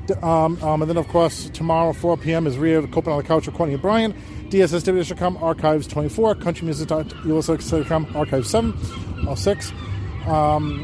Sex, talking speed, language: male, 165 wpm, English